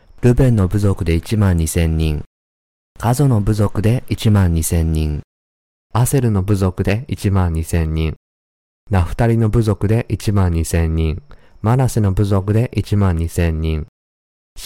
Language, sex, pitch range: Japanese, male, 80-110 Hz